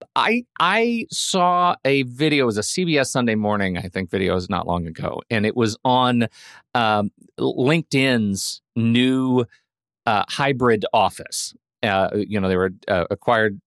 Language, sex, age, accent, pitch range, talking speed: English, male, 40-59, American, 105-145 Hz, 155 wpm